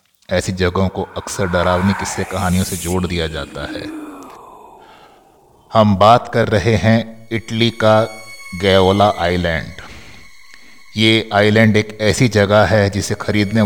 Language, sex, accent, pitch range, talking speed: Hindi, male, native, 95-110 Hz, 125 wpm